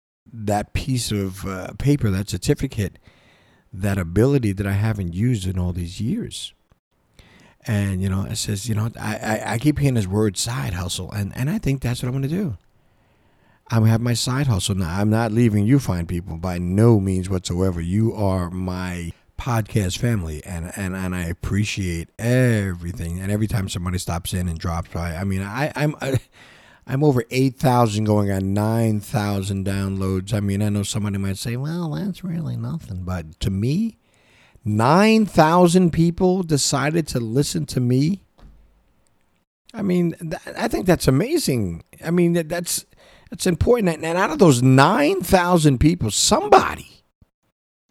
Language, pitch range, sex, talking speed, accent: English, 95-140 Hz, male, 170 wpm, American